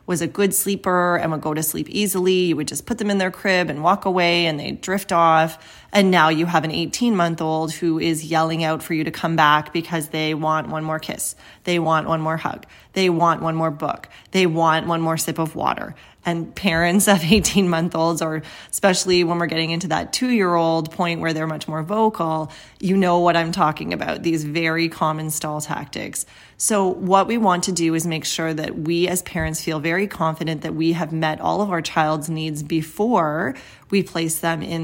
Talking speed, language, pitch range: 220 wpm, English, 160-185 Hz